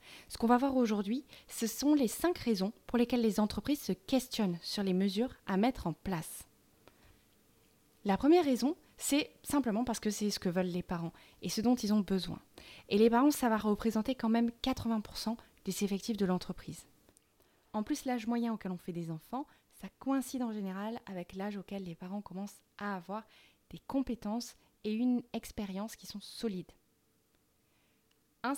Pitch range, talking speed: 195-245 Hz, 180 wpm